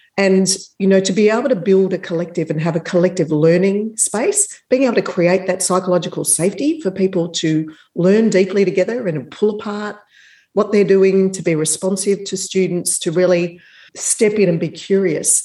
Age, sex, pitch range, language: 40-59, female, 165-200 Hz, English